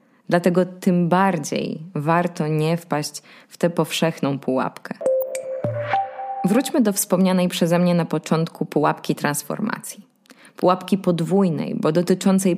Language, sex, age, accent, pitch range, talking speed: Polish, female, 20-39, native, 170-210 Hz, 110 wpm